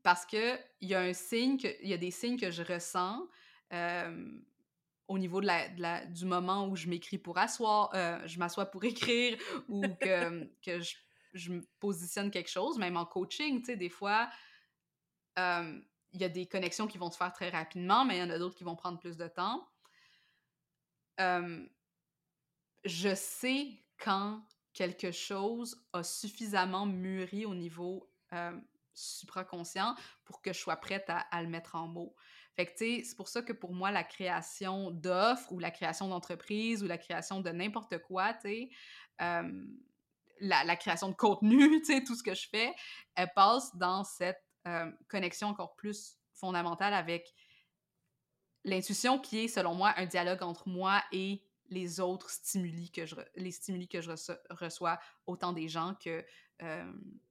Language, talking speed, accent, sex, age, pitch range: French, 175 wpm, Canadian, female, 20-39, 175-210 Hz